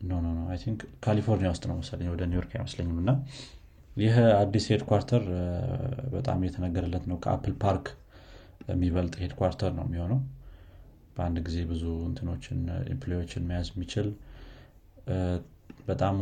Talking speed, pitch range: 125 wpm, 85-115 Hz